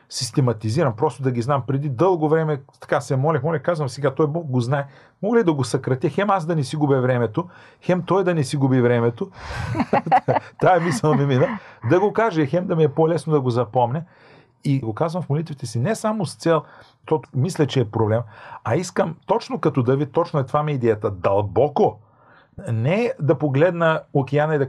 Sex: male